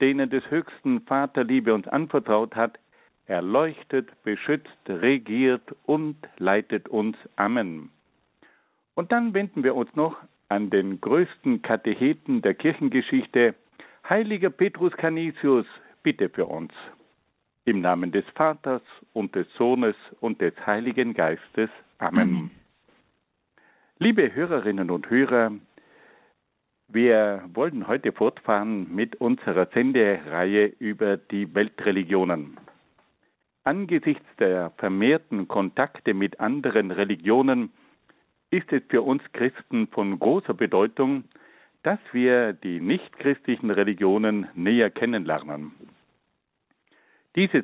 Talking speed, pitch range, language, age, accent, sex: 100 wpm, 105-155 Hz, German, 60-79, German, male